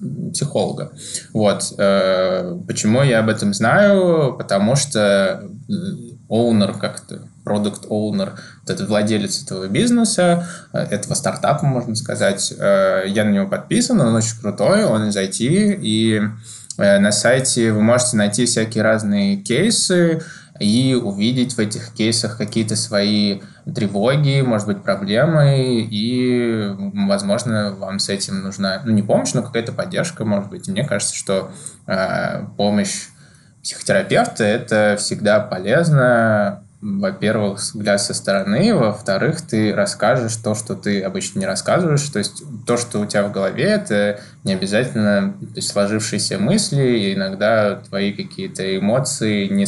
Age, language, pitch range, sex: 20-39, Russian, 100-155 Hz, male